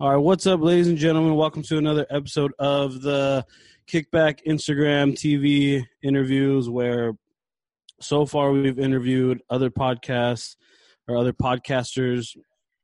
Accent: American